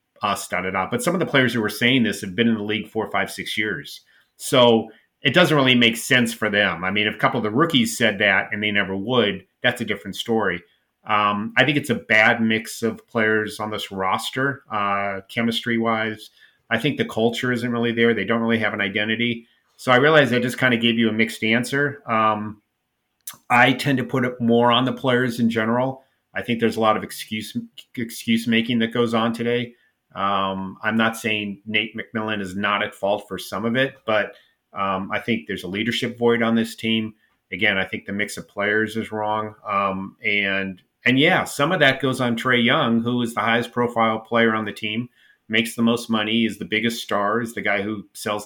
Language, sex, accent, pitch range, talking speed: English, male, American, 105-120 Hz, 220 wpm